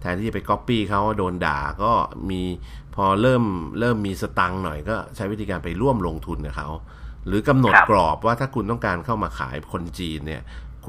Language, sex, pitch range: Thai, male, 80-105 Hz